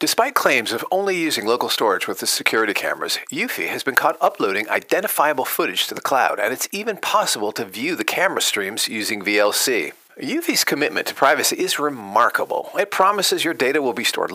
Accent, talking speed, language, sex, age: American, 190 wpm, English, male, 40-59